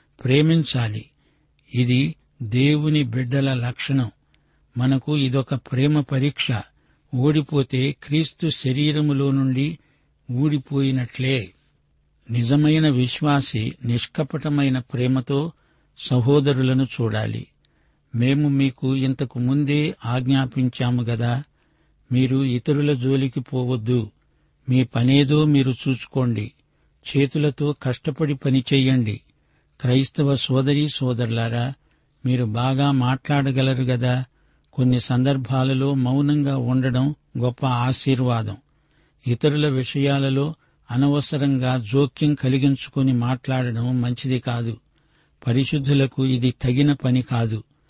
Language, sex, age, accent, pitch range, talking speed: Telugu, male, 60-79, native, 125-145 Hz, 80 wpm